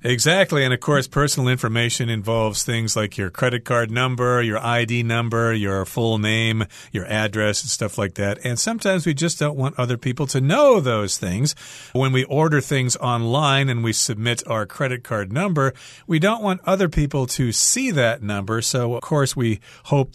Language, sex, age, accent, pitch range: Chinese, male, 50-69, American, 115-140 Hz